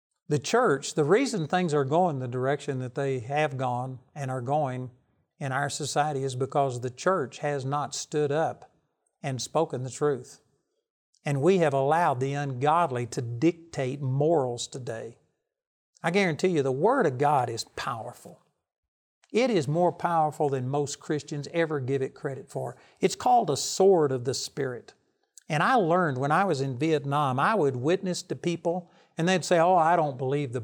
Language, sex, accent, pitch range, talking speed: English, male, American, 135-170 Hz, 175 wpm